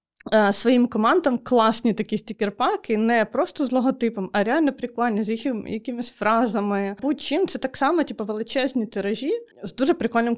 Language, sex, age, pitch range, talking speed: Ukrainian, female, 20-39, 205-255 Hz, 150 wpm